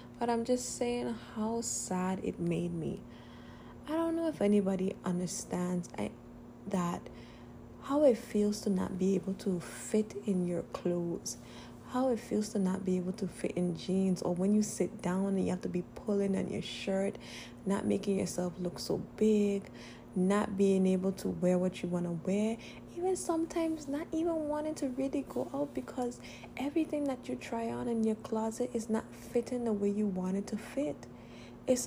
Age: 20-39